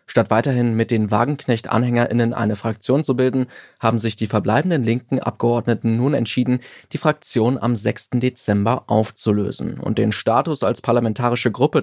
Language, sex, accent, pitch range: German, male, German, 115-135 Hz